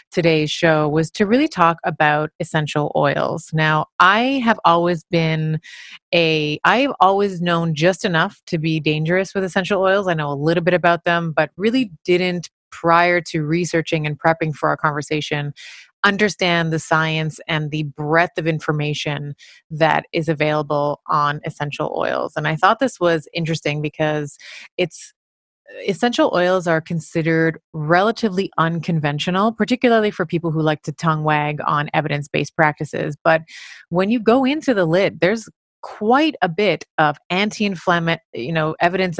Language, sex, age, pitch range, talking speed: English, female, 30-49, 155-180 Hz, 150 wpm